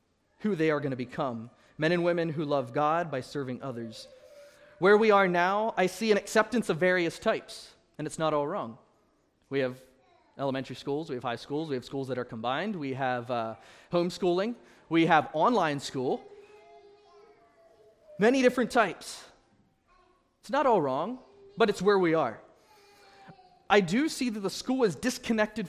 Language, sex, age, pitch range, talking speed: English, male, 30-49, 170-245 Hz, 170 wpm